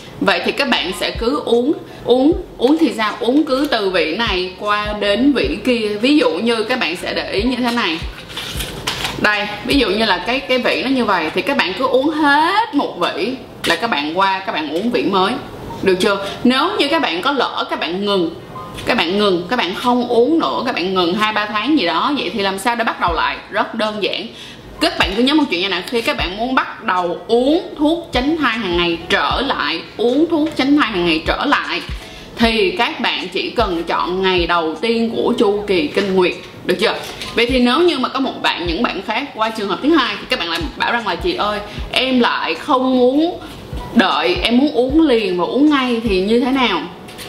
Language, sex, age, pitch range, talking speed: Vietnamese, female, 20-39, 210-295 Hz, 230 wpm